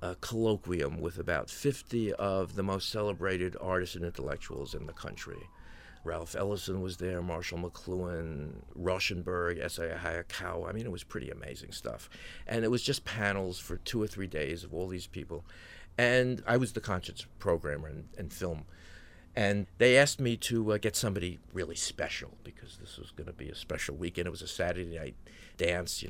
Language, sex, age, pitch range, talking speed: English, male, 50-69, 85-105 Hz, 185 wpm